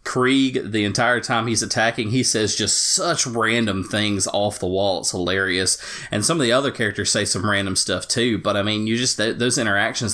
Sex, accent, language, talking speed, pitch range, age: male, American, English, 215 wpm, 100-120 Hz, 30-49